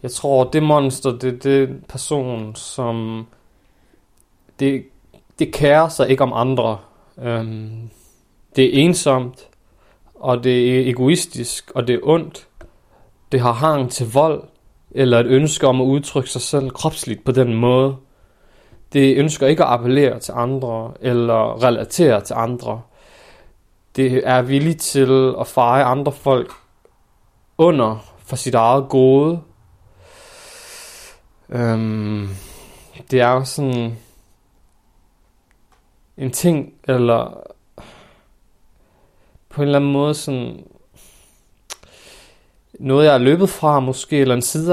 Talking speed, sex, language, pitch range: 125 wpm, male, Danish, 120-145 Hz